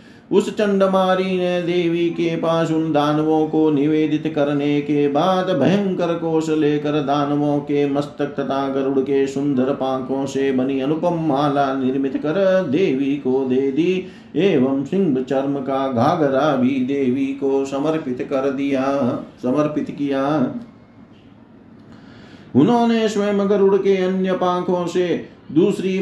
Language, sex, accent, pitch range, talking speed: Hindi, male, native, 145-185 Hz, 95 wpm